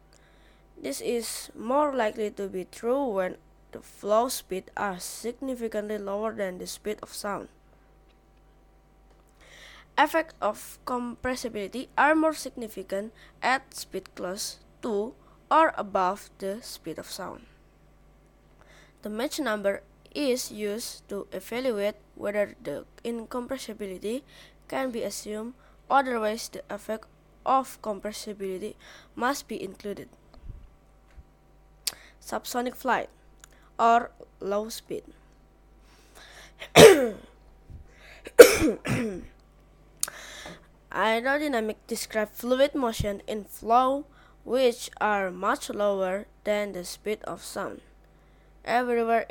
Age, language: 20-39, English